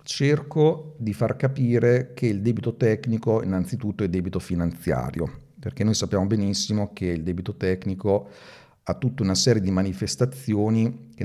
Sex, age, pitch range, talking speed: male, 40-59, 95-115 Hz, 145 wpm